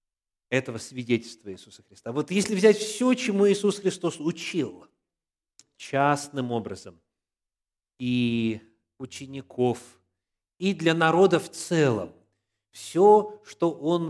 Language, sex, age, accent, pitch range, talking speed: Russian, male, 30-49, native, 120-165 Hz, 100 wpm